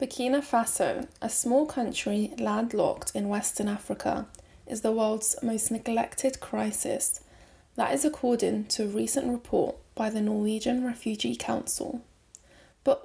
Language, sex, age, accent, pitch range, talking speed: English, female, 10-29, British, 220-265 Hz, 130 wpm